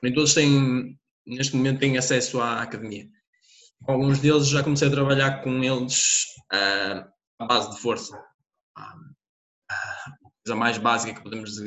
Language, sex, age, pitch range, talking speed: Portuguese, male, 20-39, 115-145 Hz, 150 wpm